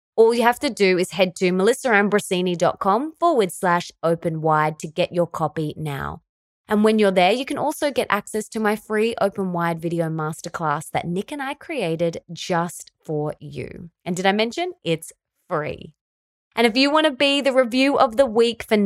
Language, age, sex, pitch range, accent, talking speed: English, 20-39, female, 165-220 Hz, Australian, 190 wpm